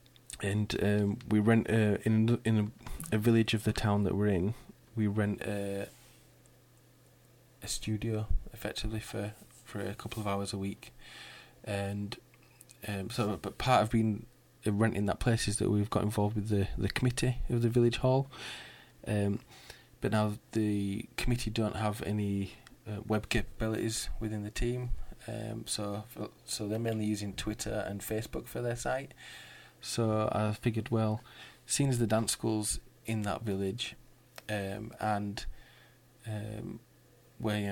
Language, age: English, 20-39